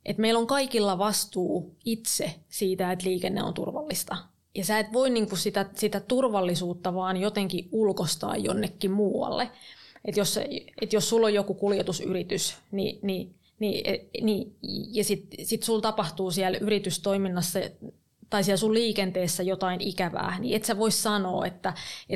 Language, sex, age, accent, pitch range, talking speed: English, female, 20-39, Finnish, 190-215 Hz, 125 wpm